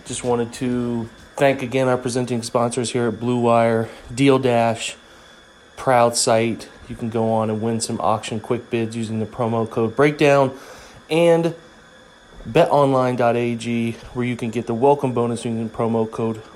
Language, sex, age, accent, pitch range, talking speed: English, male, 30-49, American, 115-130 Hz, 155 wpm